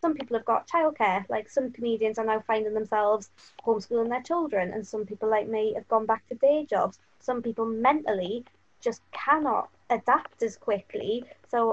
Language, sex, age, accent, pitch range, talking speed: English, female, 20-39, British, 210-240 Hz, 180 wpm